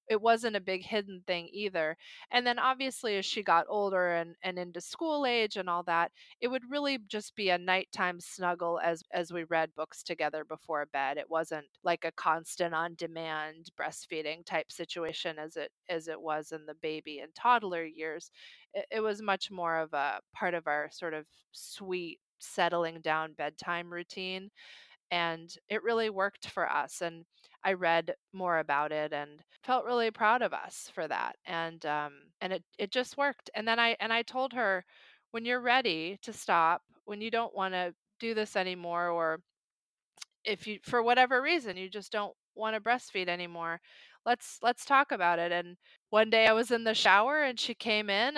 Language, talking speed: English, 190 wpm